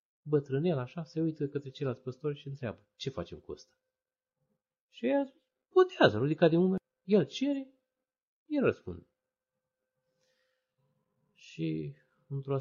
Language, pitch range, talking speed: Romanian, 105-170 Hz, 120 wpm